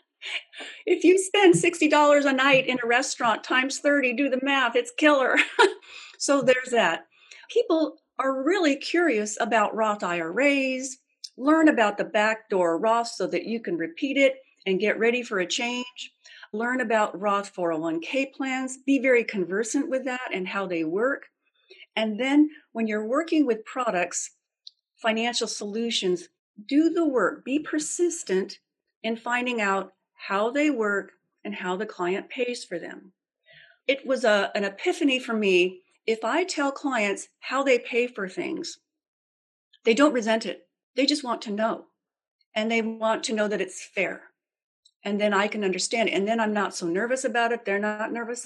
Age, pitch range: 40-59, 210-280 Hz